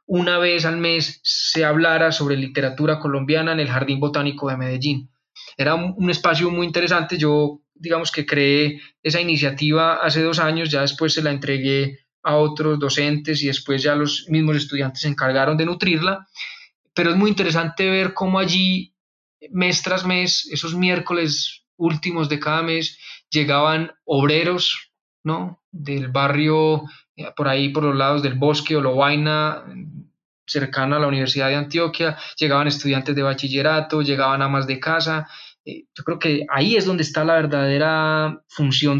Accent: Colombian